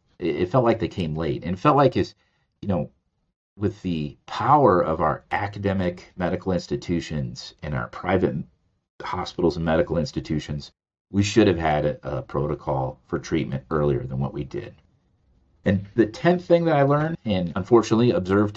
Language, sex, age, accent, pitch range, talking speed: English, male, 40-59, American, 75-100 Hz, 165 wpm